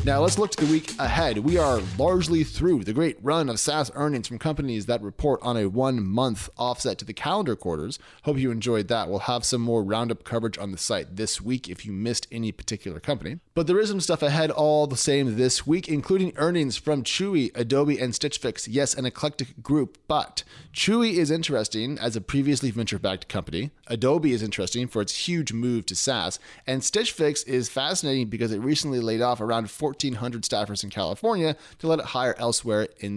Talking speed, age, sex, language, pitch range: 205 wpm, 30-49, male, English, 110-150 Hz